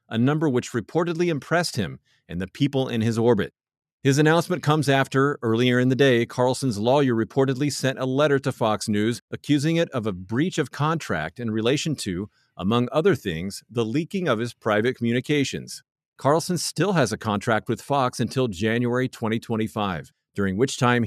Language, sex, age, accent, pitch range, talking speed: English, male, 50-69, American, 110-140 Hz, 175 wpm